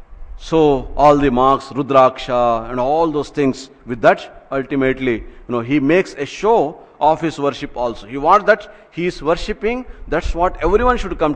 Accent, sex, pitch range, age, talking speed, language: Indian, male, 120-175 Hz, 50-69, 175 wpm, English